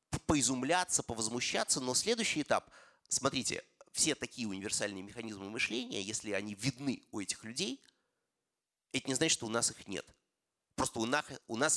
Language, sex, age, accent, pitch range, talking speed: Russian, male, 30-49, native, 100-125 Hz, 150 wpm